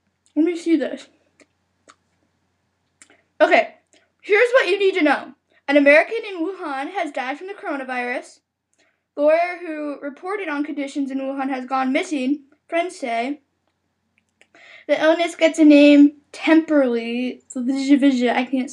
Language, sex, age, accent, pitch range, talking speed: English, female, 10-29, American, 265-355 Hz, 130 wpm